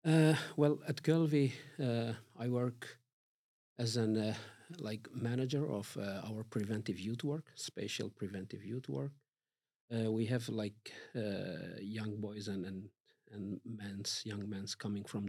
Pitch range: 105-125 Hz